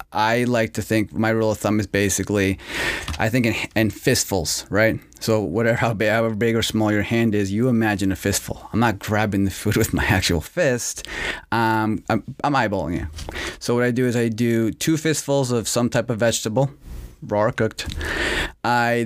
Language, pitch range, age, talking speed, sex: English, 105-130 Hz, 30-49, 190 wpm, male